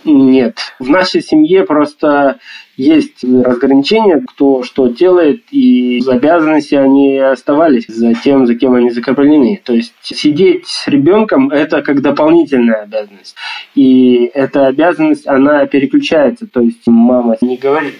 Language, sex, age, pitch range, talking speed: Russian, male, 20-39, 125-145 Hz, 135 wpm